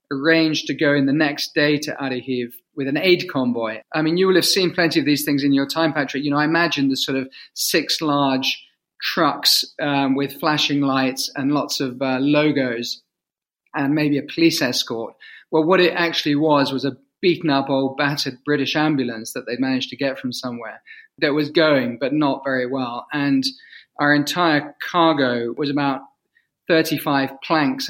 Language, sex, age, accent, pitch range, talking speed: English, male, 40-59, British, 135-165 Hz, 185 wpm